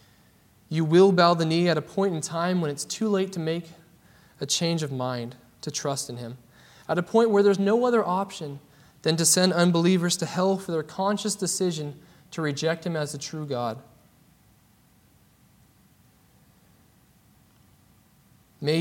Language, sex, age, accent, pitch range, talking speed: English, male, 20-39, American, 150-195 Hz, 160 wpm